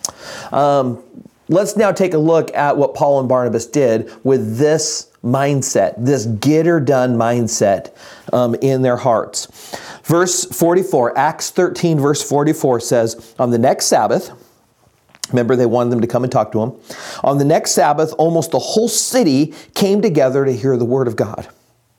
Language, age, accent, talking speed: English, 40-59, American, 165 wpm